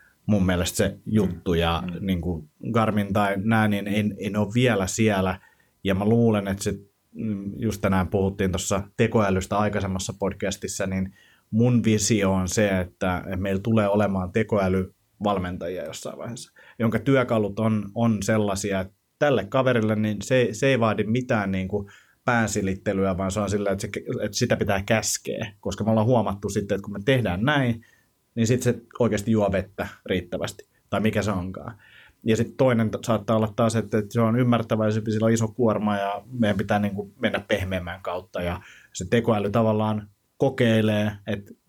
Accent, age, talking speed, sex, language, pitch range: native, 30-49, 165 wpm, male, Finnish, 100-115 Hz